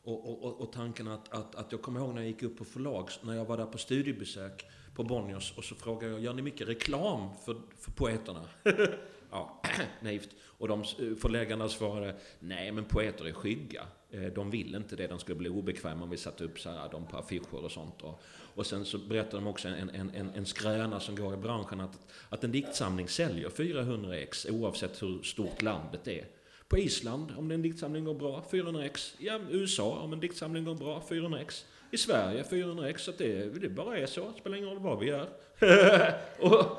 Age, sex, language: 40-59, male, Swedish